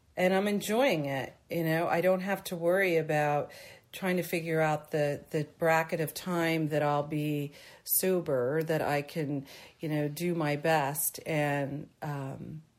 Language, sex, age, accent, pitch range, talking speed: English, female, 40-59, American, 155-185 Hz, 165 wpm